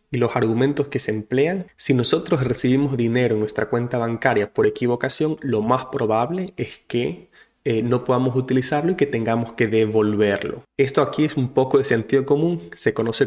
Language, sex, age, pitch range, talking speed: English, male, 20-39, 115-140 Hz, 180 wpm